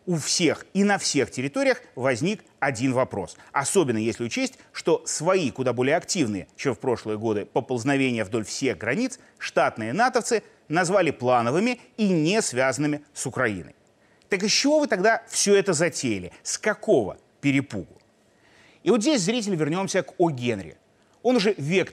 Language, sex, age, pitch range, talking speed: Russian, male, 30-49, 135-220 Hz, 155 wpm